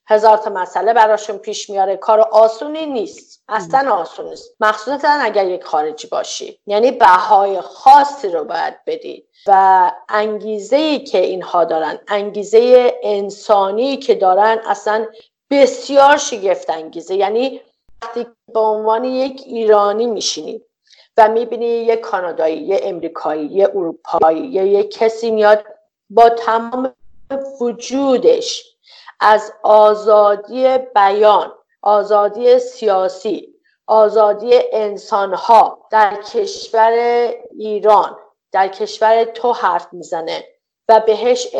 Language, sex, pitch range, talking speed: English, female, 205-260 Hz, 105 wpm